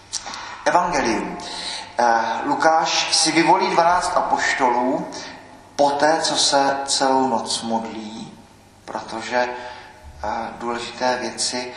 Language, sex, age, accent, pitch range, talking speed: Czech, male, 50-69, native, 115-135 Hz, 80 wpm